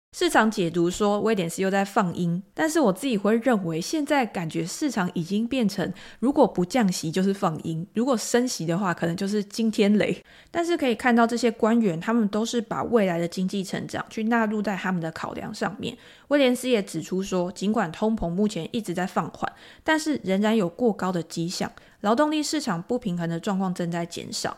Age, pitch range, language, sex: 20-39, 175-230 Hz, Chinese, female